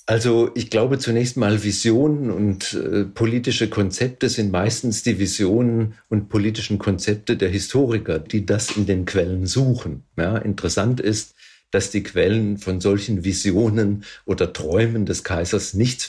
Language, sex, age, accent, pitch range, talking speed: German, male, 50-69, German, 95-115 Hz, 140 wpm